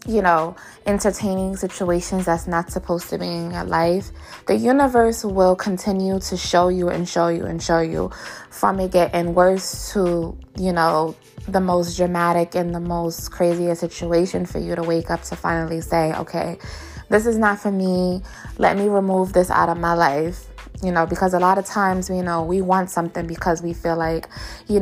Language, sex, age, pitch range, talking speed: English, female, 20-39, 170-195 Hz, 190 wpm